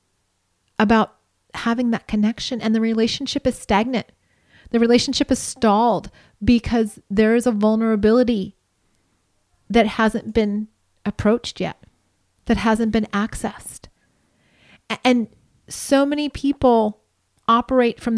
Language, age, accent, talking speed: English, 30-49, American, 110 wpm